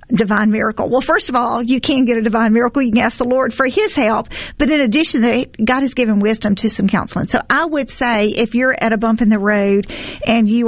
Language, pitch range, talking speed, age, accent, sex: English, 225-270 Hz, 255 wpm, 40-59, American, female